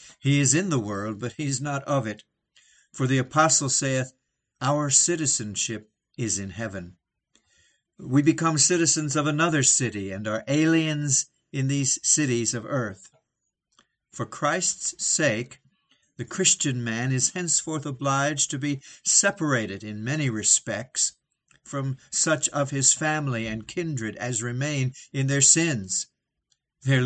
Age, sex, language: 60-79, male, English